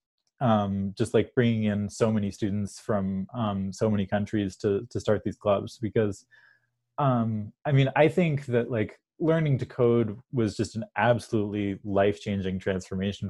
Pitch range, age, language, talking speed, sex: 105-135 Hz, 20-39, English, 160 wpm, male